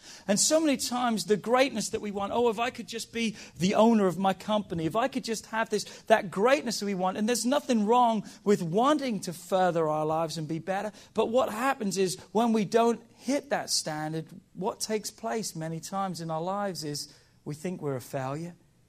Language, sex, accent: English, male, British